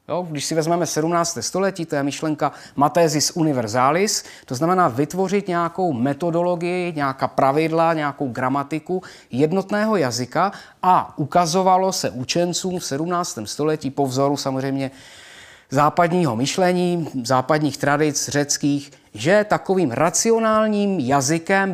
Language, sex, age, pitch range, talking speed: Czech, male, 30-49, 140-180 Hz, 110 wpm